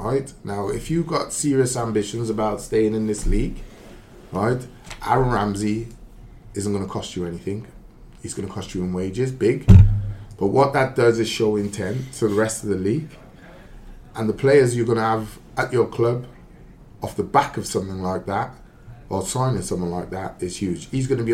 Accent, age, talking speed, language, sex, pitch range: British, 20-39, 195 wpm, English, male, 100-120 Hz